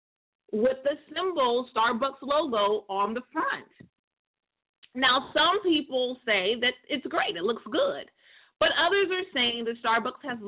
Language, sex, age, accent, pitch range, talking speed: English, female, 40-59, American, 215-310 Hz, 145 wpm